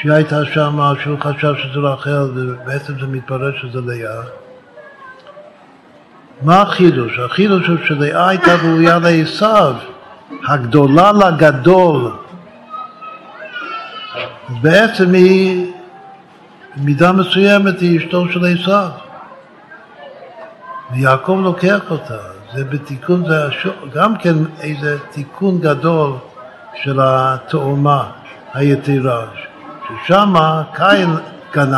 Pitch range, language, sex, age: 135-190 Hz, Hebrew, male, 60-79